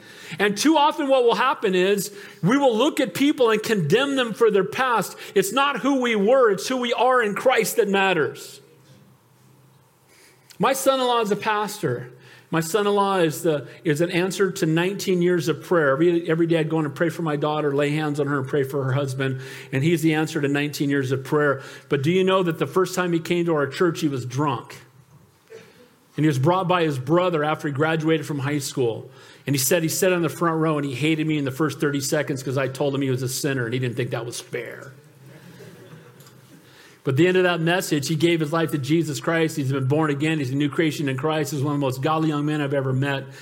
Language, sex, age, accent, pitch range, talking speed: English, male, 40-59, American, 145-180 Hz, 240 wpm